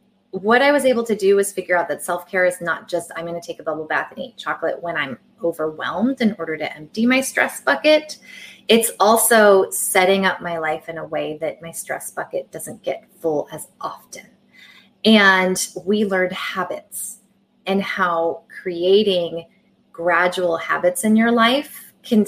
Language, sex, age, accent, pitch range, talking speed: English, female, 20-39, American, 170-215 Hz, 175 wpm